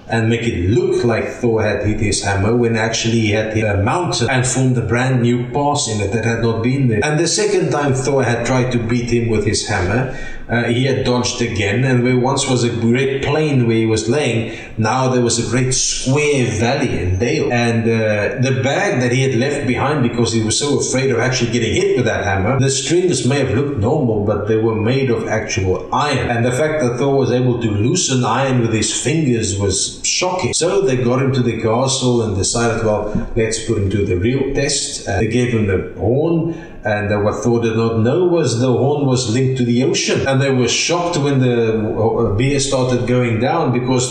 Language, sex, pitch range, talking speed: English, male, 115-130 Hz, 225 wpm